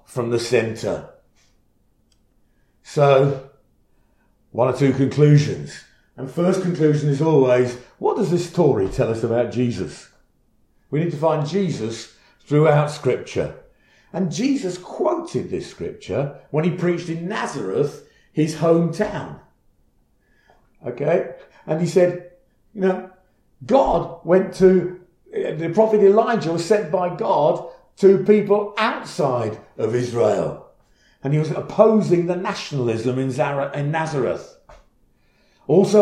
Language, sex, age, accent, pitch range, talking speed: English, male, 50-69, British, 135-190 Hz, 120 wpm